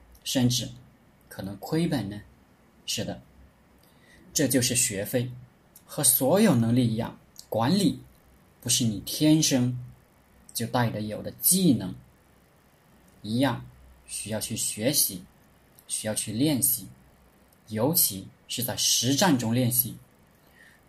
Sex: male